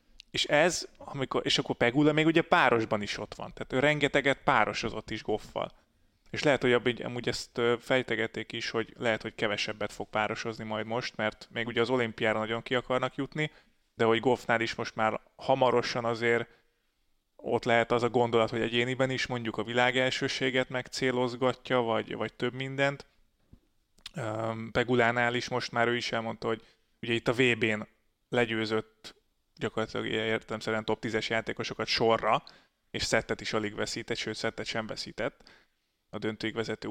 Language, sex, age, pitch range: Hungarian, male, 20-39, 110-130 Hz